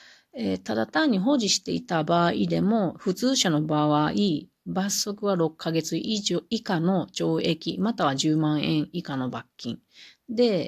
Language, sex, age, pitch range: Japanese, female, 40-59, 145-195 Hz